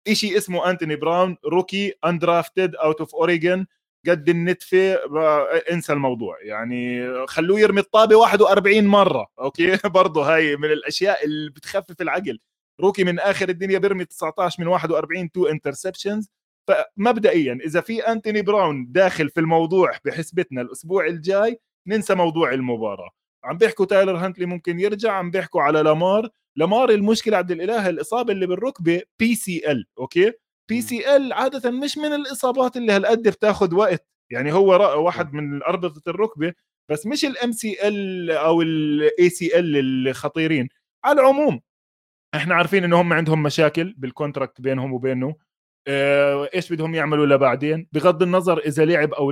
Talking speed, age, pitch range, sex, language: 135 wpm, 20-39, 150-200 Hz, male, Arabic